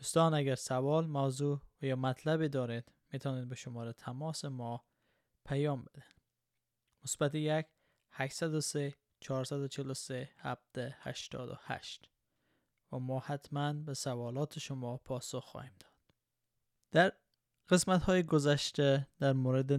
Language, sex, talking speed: Persian, male, 100 wpm